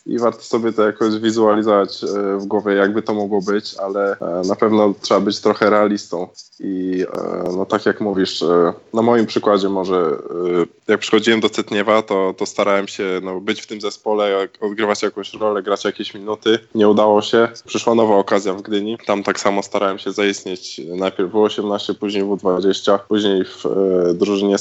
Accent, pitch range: native, 95-105 Hz